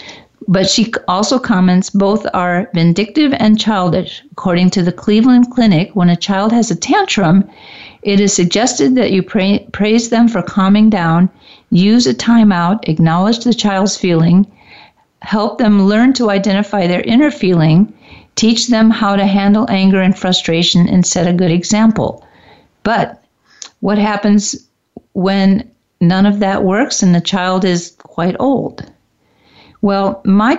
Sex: female